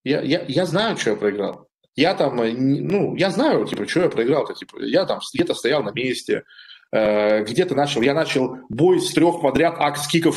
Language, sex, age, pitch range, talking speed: Russian, male, 20-39, 135-185 Hz, 195 wpm